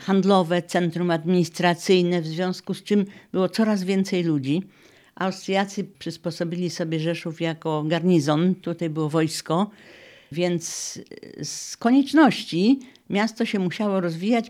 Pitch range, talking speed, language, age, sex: 155-190 Hz, 110 wpm, Polish, 50-69, female